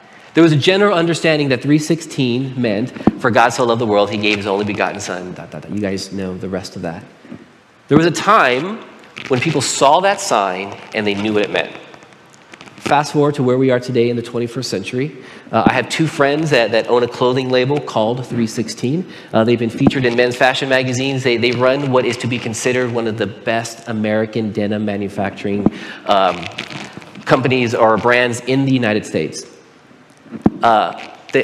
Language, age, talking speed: English, 40-59, 185 wpm